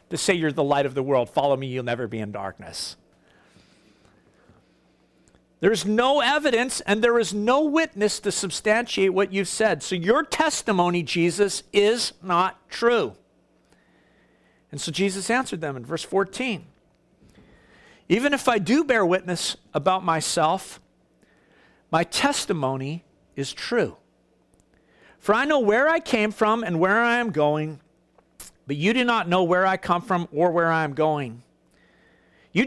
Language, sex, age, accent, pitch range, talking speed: English, male, 50-69, American, 150-230 Hz, 150 wpm